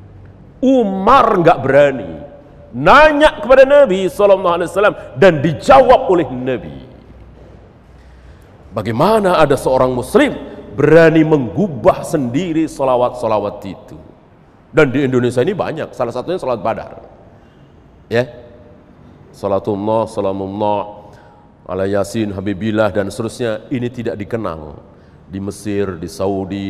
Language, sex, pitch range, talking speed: Indonesian, male, 105-165 Hz, 100 wpm